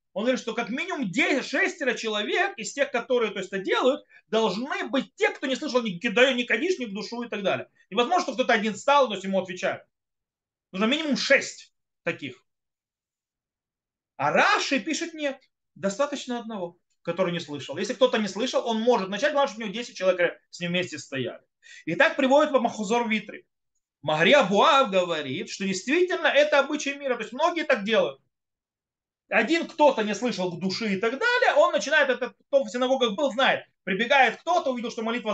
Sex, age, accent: male, 30-49, native